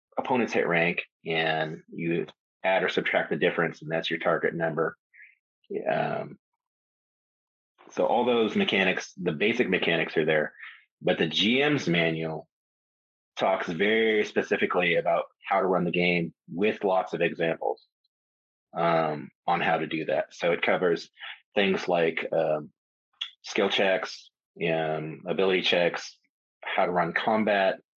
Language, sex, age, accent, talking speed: English, male, 30-49, American, 135 wpm